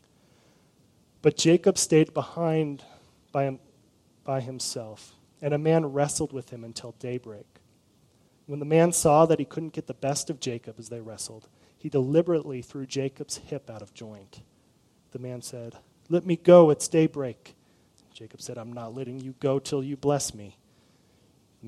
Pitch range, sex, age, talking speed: 120-145 Hz, male, 30-49, 160 wpm